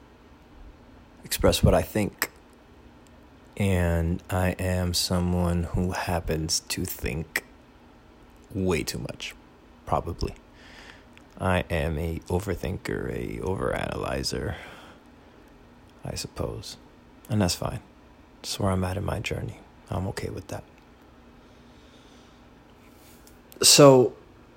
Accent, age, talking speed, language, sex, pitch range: American, 20-39, 95 wpm, English, male, 80-95 Hz